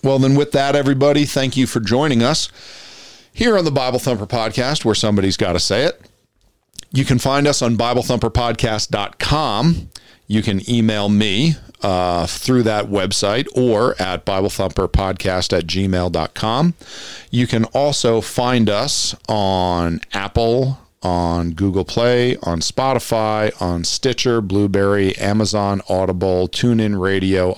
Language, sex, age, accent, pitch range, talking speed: English, male, 40-59, American, 95-120 Hz, 140 wpm